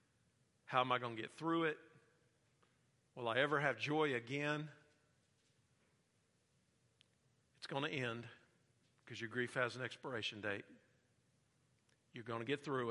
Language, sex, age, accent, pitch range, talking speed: English, male, 50-69, American, 120-145 Hz, 140 wpm